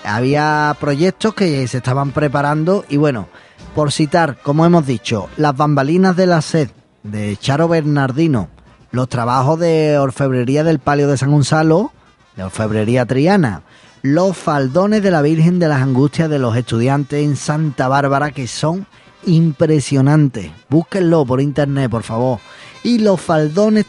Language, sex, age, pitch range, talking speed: Spanish, male, 20-39, 125-160 Hz, 145 wpm